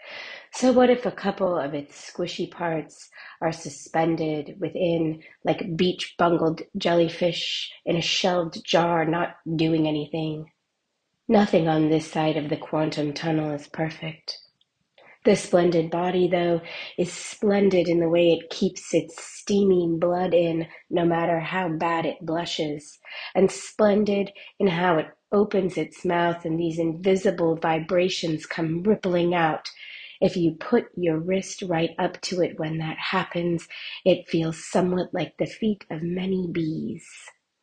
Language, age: English, 30-49